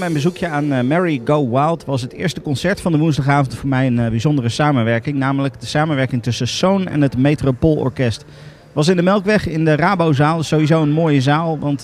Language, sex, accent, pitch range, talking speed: Dutch, male, Dutch, 130-160 Hz, 200 wpm